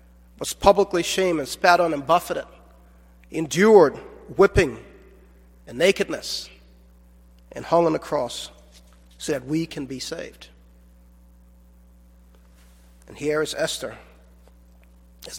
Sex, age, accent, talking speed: male, 40-59, American, 110 wpm